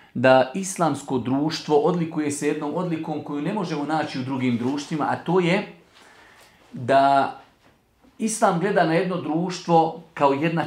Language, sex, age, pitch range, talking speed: English, male, 40-59, 145-185 Hz, 140 wpm